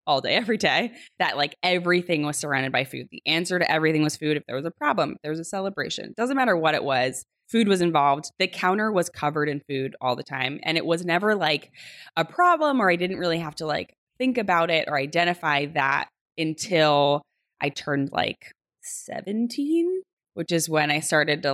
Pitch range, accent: 145-180 Hz, American